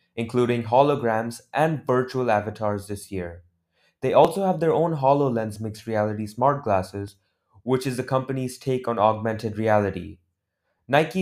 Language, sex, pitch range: English, male, 105-130 Hz